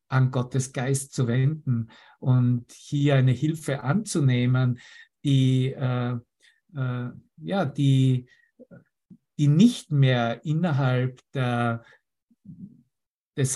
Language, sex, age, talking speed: German, male, 50-69, 70 wpm